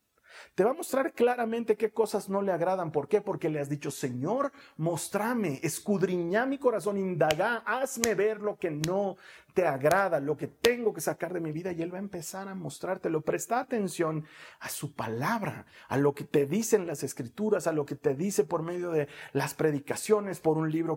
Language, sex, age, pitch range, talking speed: Spanish, male, 40-59, 150-215 Hz, 195 wpm